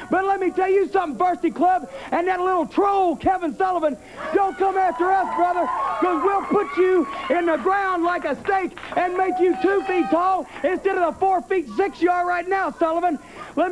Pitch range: 330-365 Hz